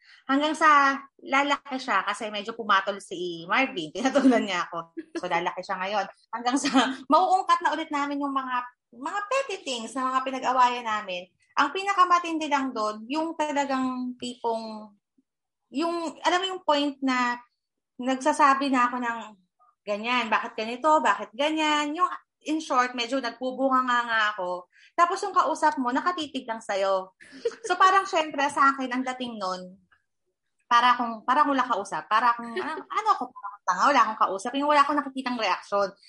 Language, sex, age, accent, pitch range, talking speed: Filipino, female, 20-39, native, 205-285 Hz, 160 wpm